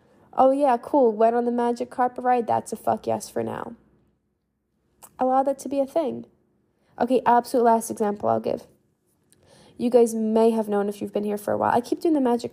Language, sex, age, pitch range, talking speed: English, female, 10-29, 205-245 Hz, 210 wpm